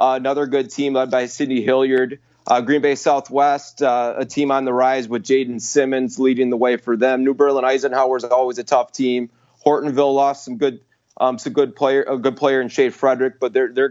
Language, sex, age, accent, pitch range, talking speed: English, male, 20-39, American, 125-140 Hz, 220 wpm